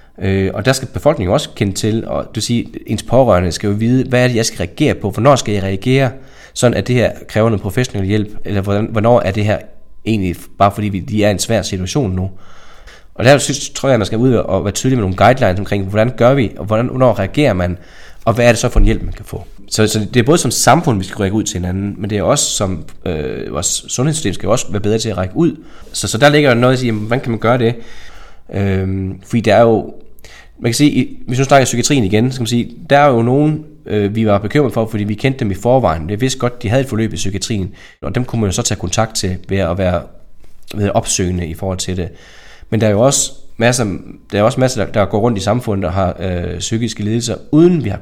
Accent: native